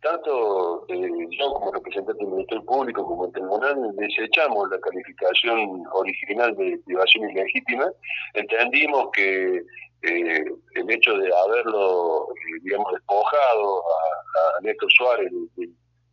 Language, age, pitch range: Spanish, 40-59, 345-430 Hz